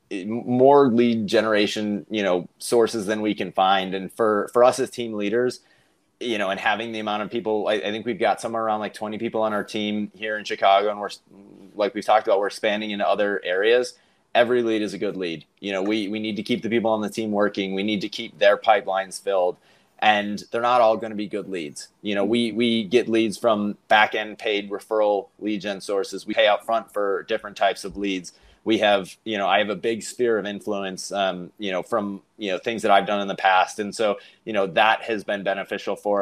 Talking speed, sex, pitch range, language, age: 235 wpm, male, 100-115 Hz, English, 30-49